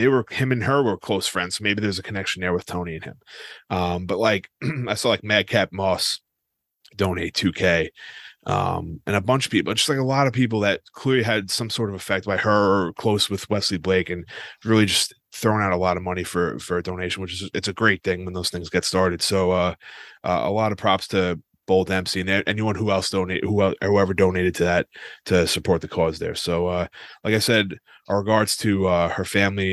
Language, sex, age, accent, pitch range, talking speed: English, male, 30-49, American, 90-110 Hz, 230 wpm